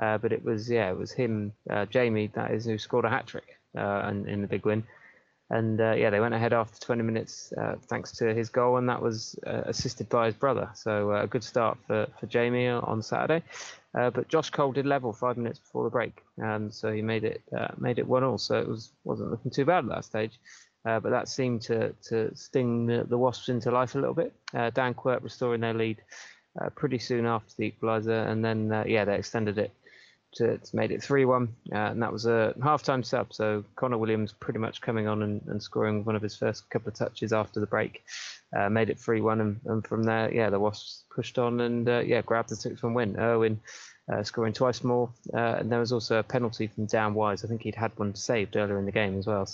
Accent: British